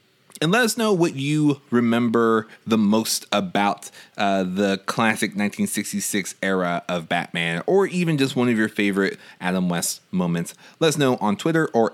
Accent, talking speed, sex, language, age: American, 165 wpm, male, English, 30-49